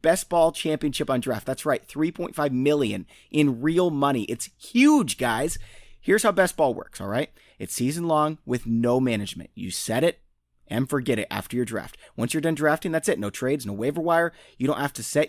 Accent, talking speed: American, 210 wpm